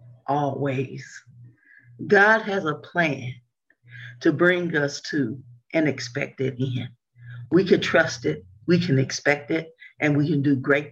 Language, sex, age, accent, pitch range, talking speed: English, female, 40-59, American, 130-175 Hz, 135 wpm